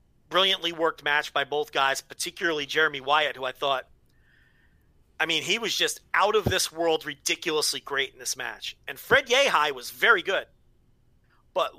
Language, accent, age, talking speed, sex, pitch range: English, American, 40-59, 170 wpm, male, 135-175 Hz